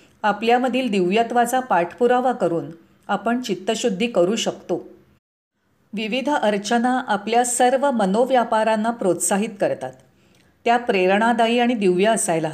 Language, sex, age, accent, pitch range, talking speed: Marathi, female, 40-59, native, 180-240 Hz, 95 wpm